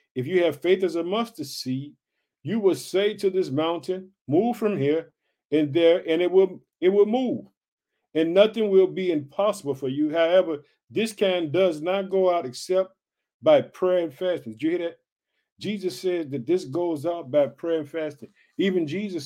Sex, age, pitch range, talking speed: male, 50-69, 140-185 Hz, 185 wpm